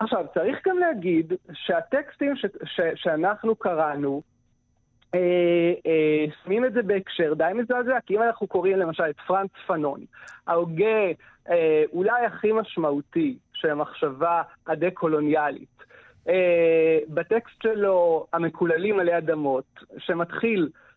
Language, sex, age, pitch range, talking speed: Hebrew, male, 40-59, 160-210 Hz, 115 wpm